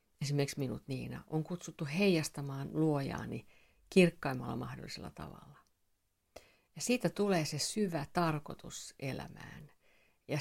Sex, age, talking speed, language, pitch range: female, 50-69, 105 wpm, Finnish, 140-175 Hz